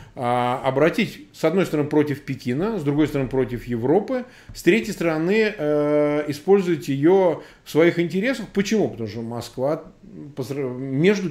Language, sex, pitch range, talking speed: Russian, male, 135-175 Hz, 125 wpm